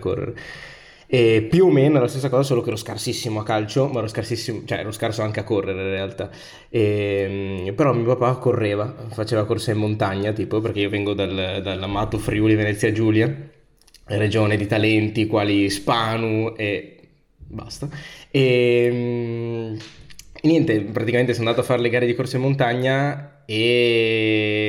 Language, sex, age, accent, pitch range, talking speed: Italian, male, 20-39, native, 105-120 Hz, 155 wpm